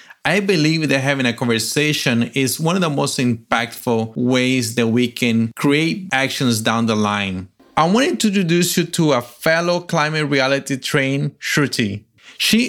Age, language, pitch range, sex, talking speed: 30-49, English, 120-160 Hz, male, 160 wpm